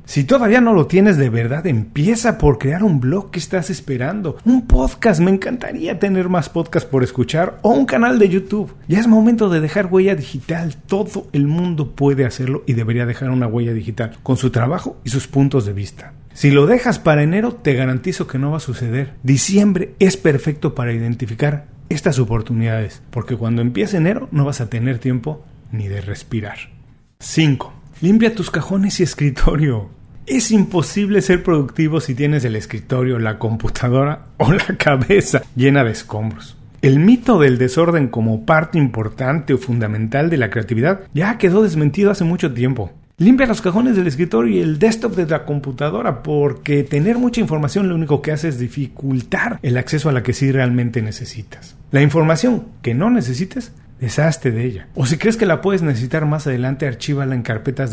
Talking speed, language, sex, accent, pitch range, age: 180 wpm, Spanish, male, Mexican, 125-180 Hz, 40-59